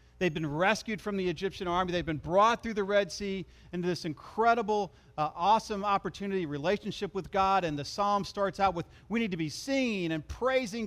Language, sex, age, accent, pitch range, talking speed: English, male, 40-59, American, 165-245 Hz, 200 wpm